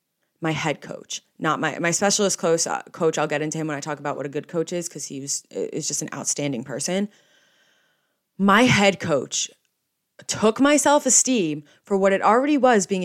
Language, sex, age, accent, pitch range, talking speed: English, female, 20-39, American, 160-210 Hz, 200 wpm